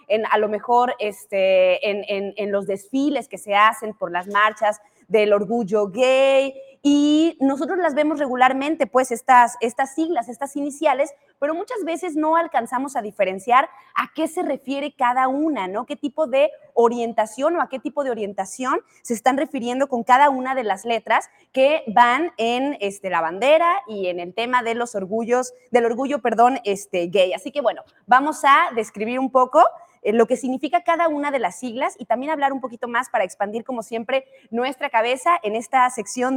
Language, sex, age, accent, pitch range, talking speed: Spanish, female, 20-39, Mexican, 225-290 Hz, 185 wpm